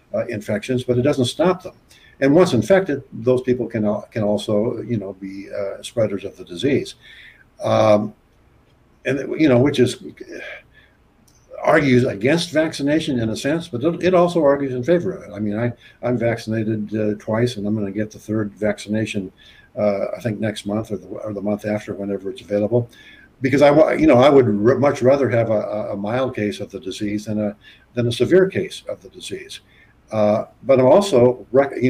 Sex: male